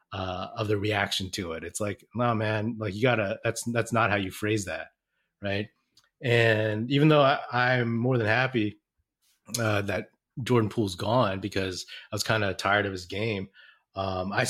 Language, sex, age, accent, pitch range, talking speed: English, male, 30-49, American, 100-120 Hz, 180 wpm